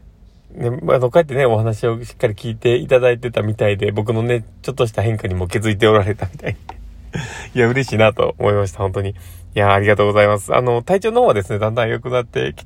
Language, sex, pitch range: Japanese, male, 100-125 Hz